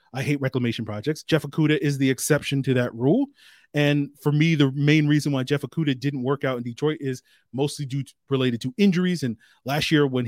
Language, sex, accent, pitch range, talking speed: English, male, American, 125-155 Hz, 215 wpm